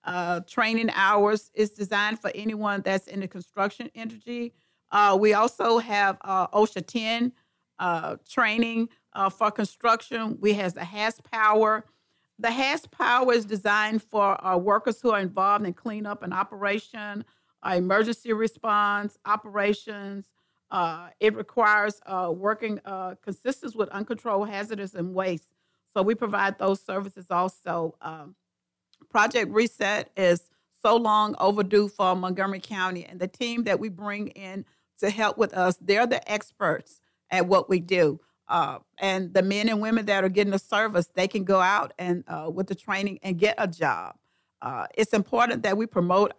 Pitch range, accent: 185-220 Hz, American